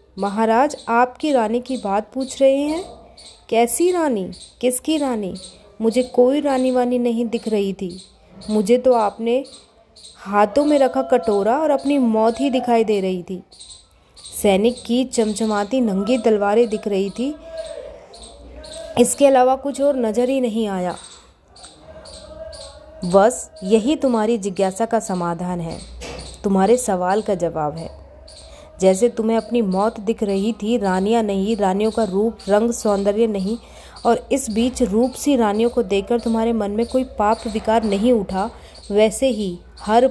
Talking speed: 145 wpm